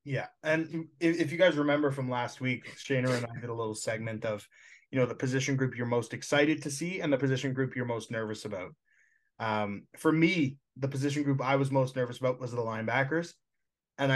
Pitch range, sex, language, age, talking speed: 120-145 Hz, male, English, 20-39, 215 wpm